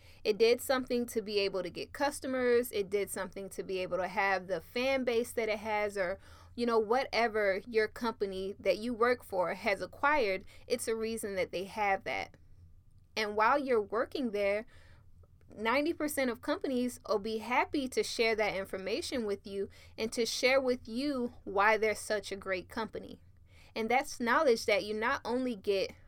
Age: 10-29